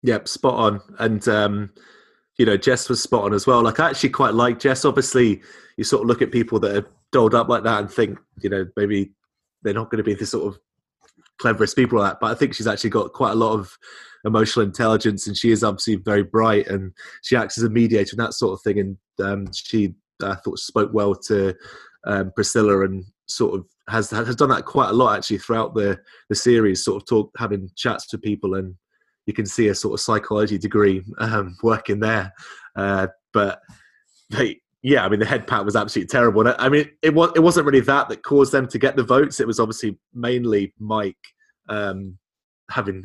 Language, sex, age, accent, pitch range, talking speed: English, male, 20-39, British, 100-120 Hz, 215 wpm